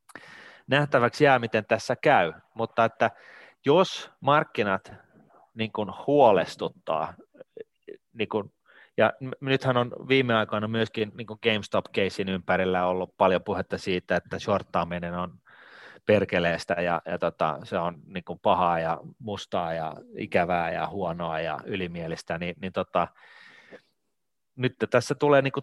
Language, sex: Finnish, male